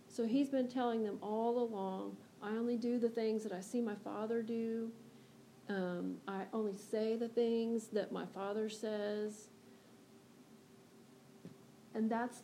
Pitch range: 200-230 Hz